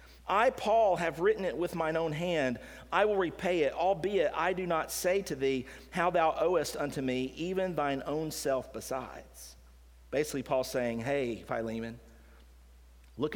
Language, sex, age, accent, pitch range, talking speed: English, male, 40-59, American, 115-160 Hz, 160 wpm